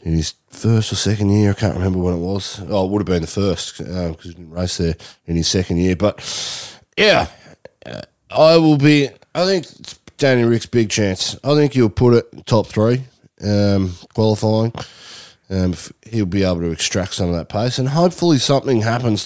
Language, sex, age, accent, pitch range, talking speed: English, male, 20-39, Australian, 90-120 Hz, 210 wpm